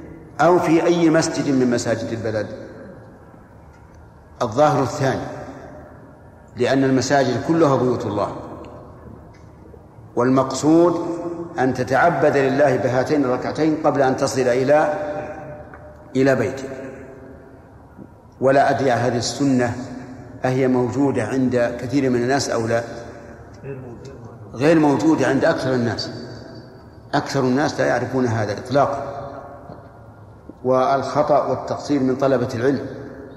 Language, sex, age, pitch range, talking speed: Arabic, male, 60-79, 125-150 Hz, 95 wpm